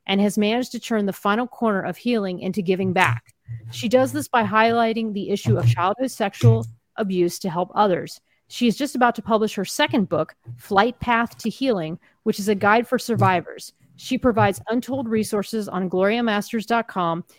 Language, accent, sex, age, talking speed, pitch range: English, American, female, 30-49, 180 wpm, 180-230 Hz